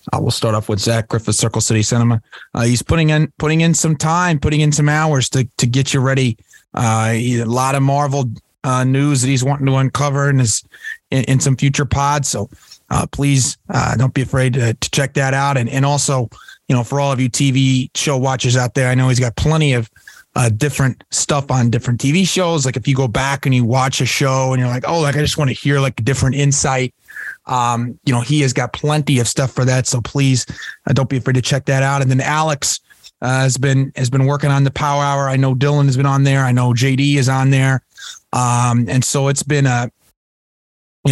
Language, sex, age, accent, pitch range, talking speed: English, male, 30-49, American, 125-140 Hz, 240 wpm